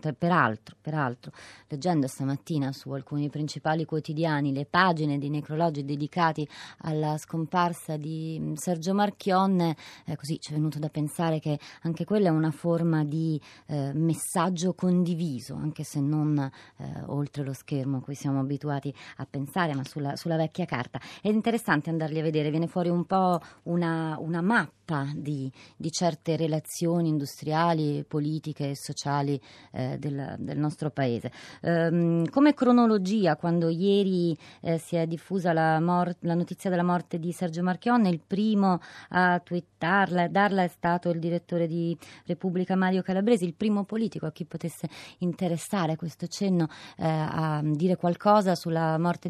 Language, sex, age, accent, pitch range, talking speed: Italian, female, 30-49, native, 150-185 Hz, 145 wpm